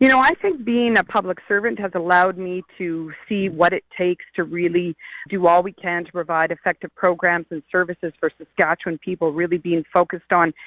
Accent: American